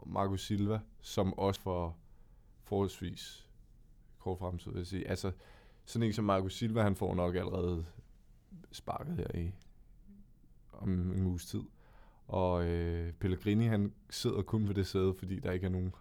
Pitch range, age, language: 95-110 Hz, 20-39, Danish